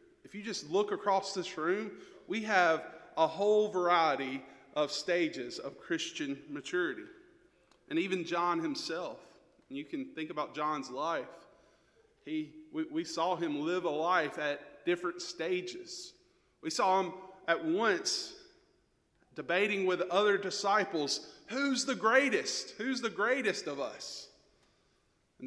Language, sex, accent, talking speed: English, male, American, 130 wpm